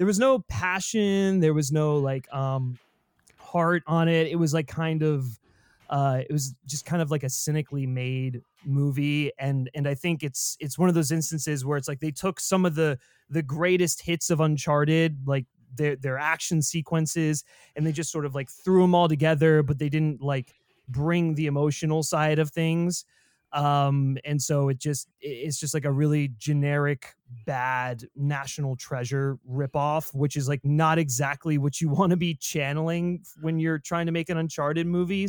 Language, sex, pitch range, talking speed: English, male, 140-165 Hz, 185 wpm